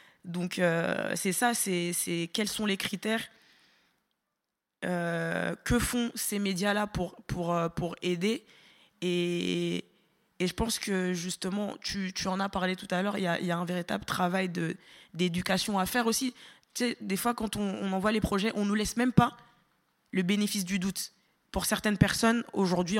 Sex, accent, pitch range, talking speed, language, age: female, French, 175-205 Hz, 185 wpm, French, 20-39